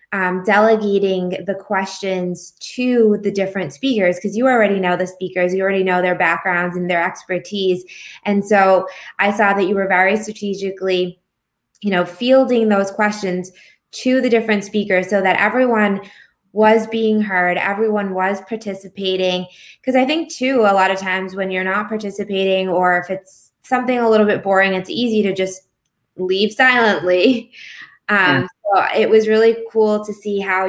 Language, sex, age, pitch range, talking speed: English, female, 20-39, 185-210 Hz, 165 wpm